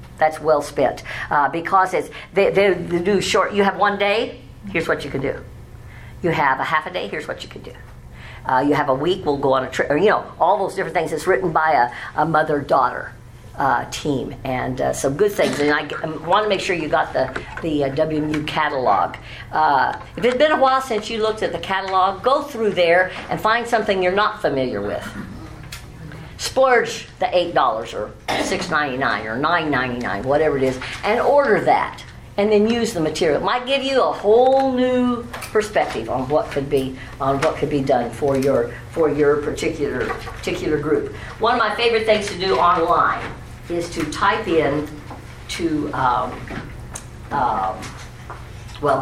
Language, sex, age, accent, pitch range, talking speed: English, female, 50-69, American, 135-205 Hz, 185 wpm